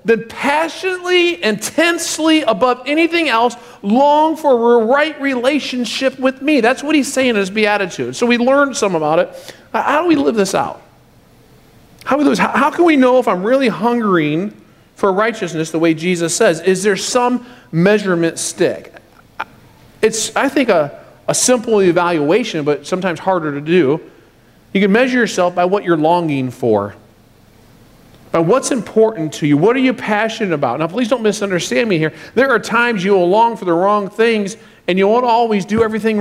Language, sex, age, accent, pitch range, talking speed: English, male, 40-59, American, 175-245 Hz, 175 wpm